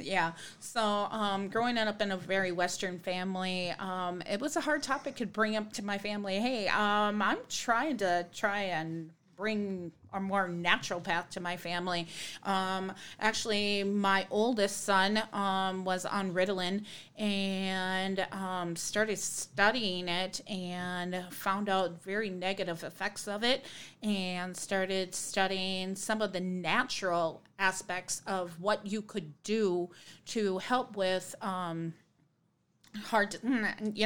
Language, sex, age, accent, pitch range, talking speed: English, female, 30-49, American, 180-210 Hz, 135 wpm